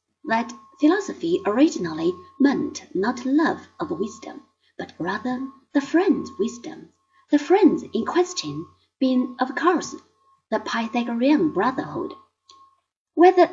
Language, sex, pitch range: Chinese, female, 260-345 Hz